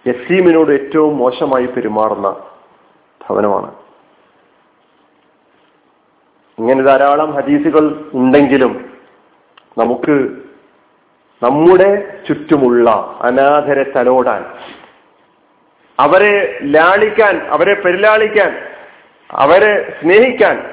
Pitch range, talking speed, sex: 130-195 Hz, 60 wpm, male